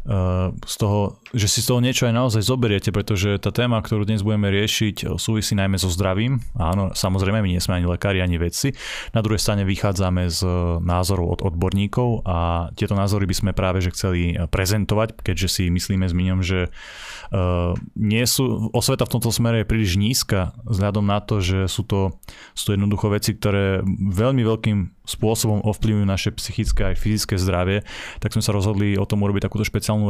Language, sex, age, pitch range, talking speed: Slovak, male, 20-39, 95-105 Hz, 185 wpm